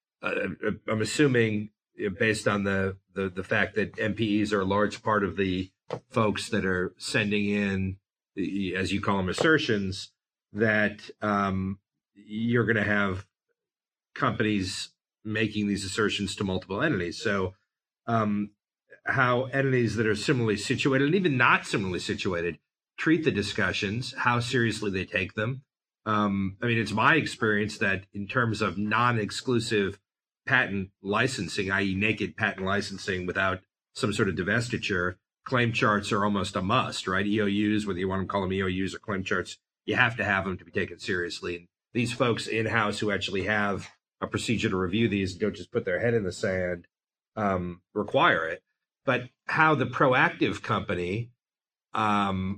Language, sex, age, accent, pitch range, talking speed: English, male, 40-59, American, 95-115 Hz, 160 wpm